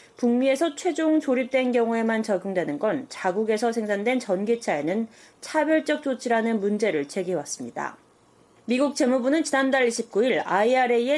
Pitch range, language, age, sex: 210-275 Hz, Korean, 20-39, female